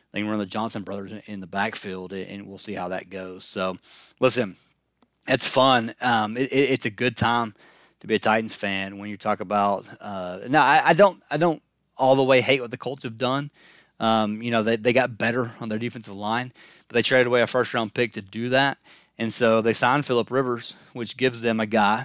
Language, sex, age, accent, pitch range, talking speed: English, male, 30-49, American, 100-125 Hz, 225 wpm